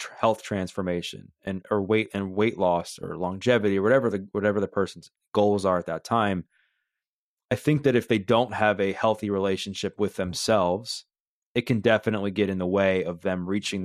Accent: American